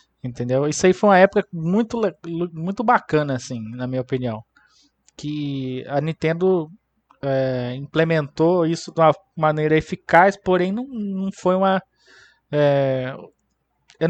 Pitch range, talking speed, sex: 135-180 Hz, 130 wpm, male